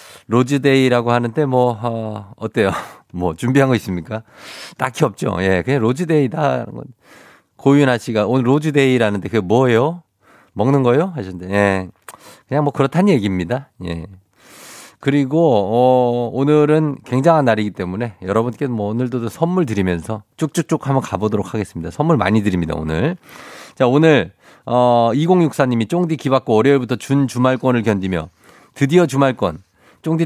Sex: male